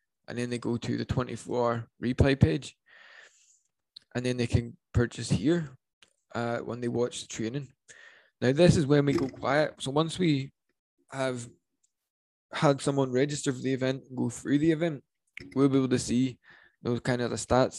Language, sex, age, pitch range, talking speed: English, male, 10-29, 120-140 Hz, 180 wpm